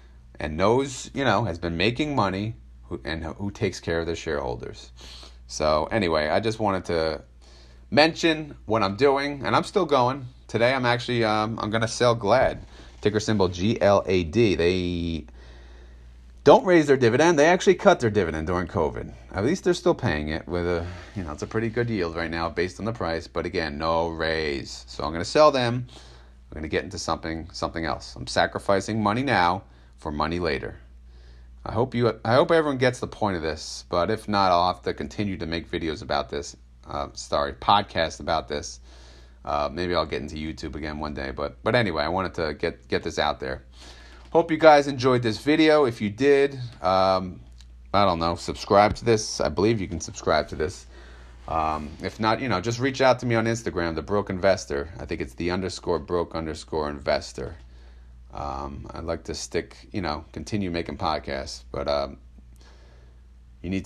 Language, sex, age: English, male, 30-49